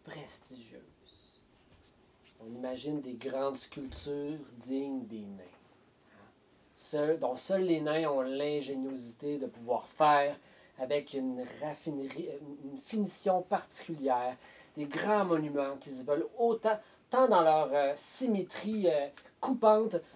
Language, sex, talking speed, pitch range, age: French, male, 115 wpm, 130-165 Hz, 40-59